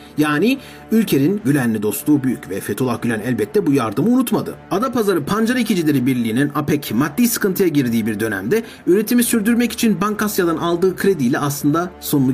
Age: 40-59